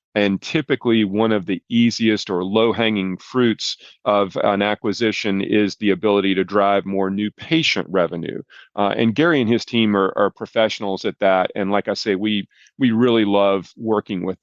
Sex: male